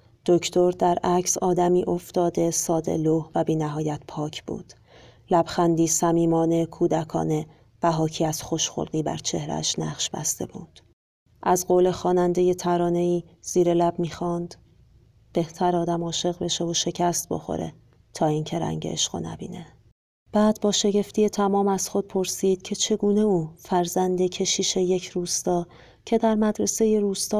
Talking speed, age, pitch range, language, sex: 140 wpm, 40-59, 165-190 Hz, Persian, female